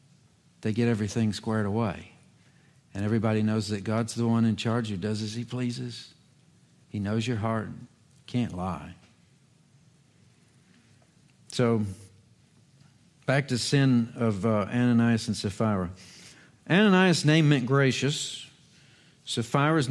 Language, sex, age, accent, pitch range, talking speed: English, male, 50-69, American, 115-145 Hz, 120 wpm